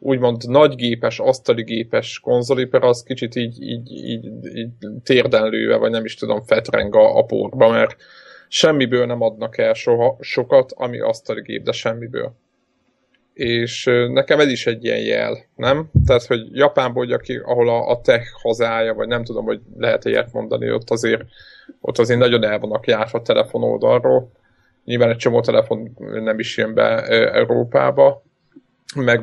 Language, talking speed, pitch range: Hungarian, 160 wpm, 120-180 Hz